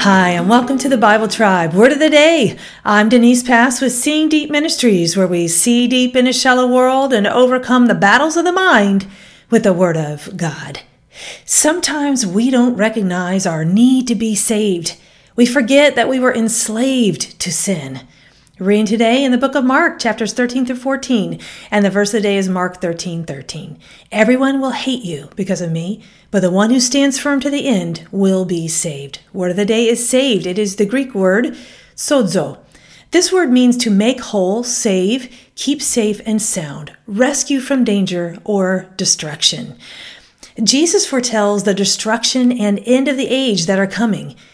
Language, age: English, 40-59